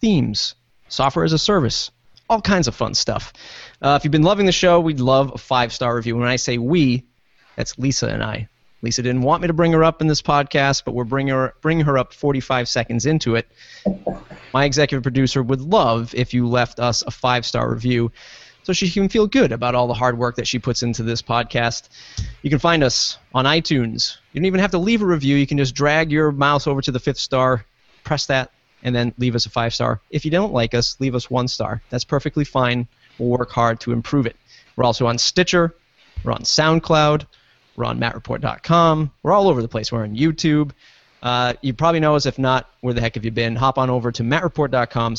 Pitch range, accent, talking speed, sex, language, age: 120-150 Hz, American, 220 wpm, male, English, 30-49